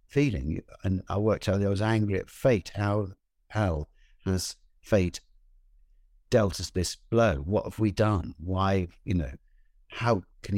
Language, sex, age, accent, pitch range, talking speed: English, male, 60-79, British, 90-120 Hz, 155 wpm